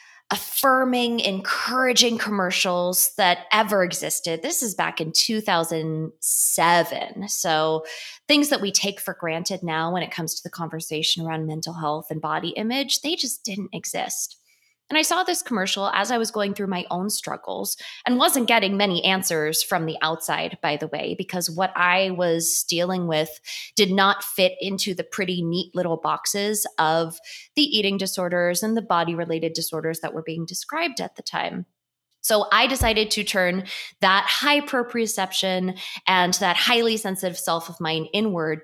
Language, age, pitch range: English, 20-39, 170-220 Hz